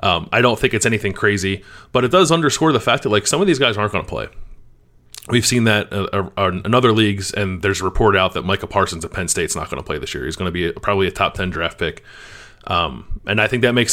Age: 30-49